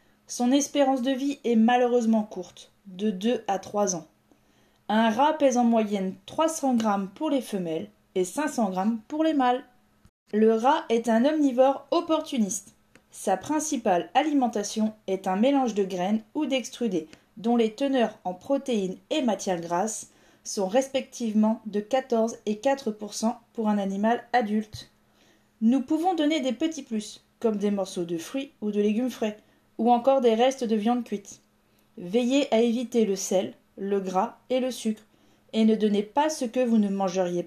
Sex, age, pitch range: female, 20-39, 200-260 Hz